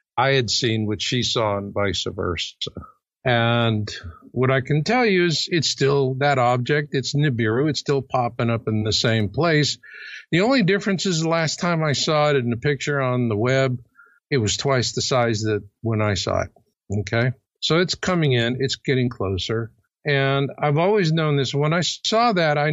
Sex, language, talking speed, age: male, English, 195 wpm, 50-69